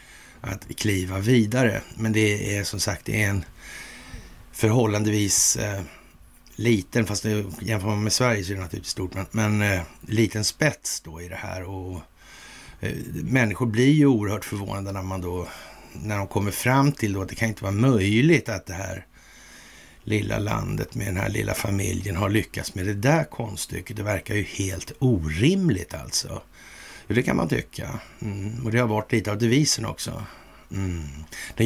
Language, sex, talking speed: Swedish, male, 170 wpm